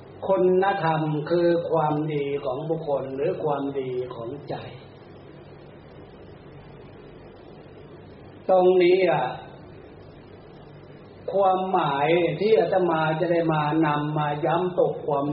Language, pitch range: Thai, 145-185 Hz